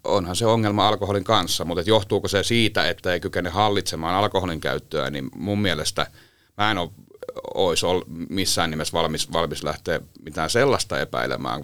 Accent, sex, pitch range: native, male, 85-110 Hz